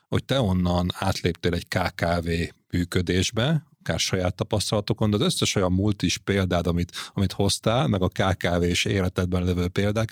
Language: Hungarian